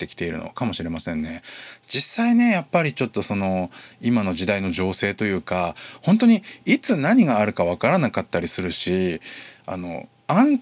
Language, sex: Japanese, male